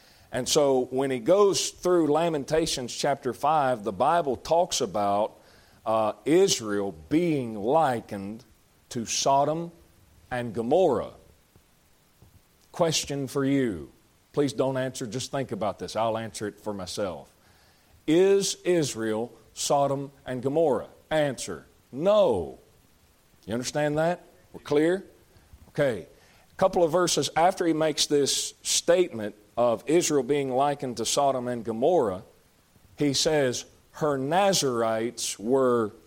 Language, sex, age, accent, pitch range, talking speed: English, male, 40-59, American, 115-150 Hz, 120 wpm